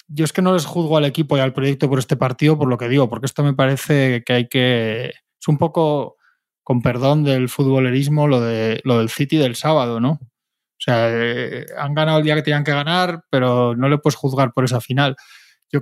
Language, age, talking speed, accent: Spanish, 20-39, 230 wpm, Spanish